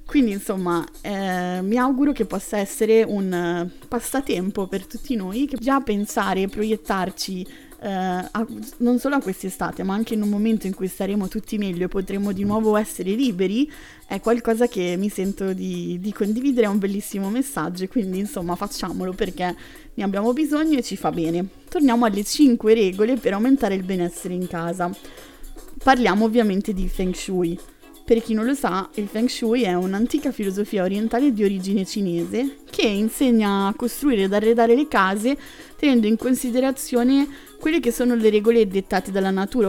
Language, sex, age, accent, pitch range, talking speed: Italian, female, 20-39, native, 190-240 Hz, 170 wpm